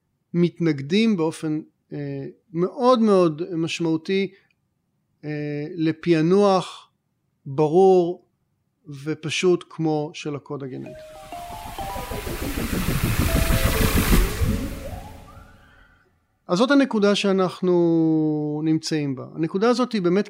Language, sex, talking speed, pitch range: Hebrew, male, 70 wpm, 155-185 Hz